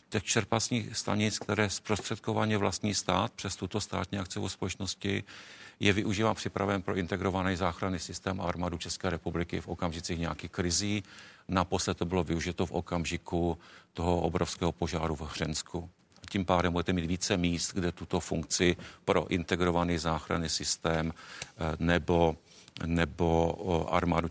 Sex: male